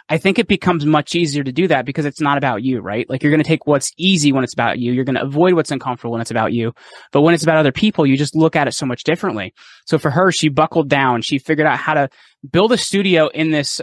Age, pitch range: 20-39, 140-170 Hz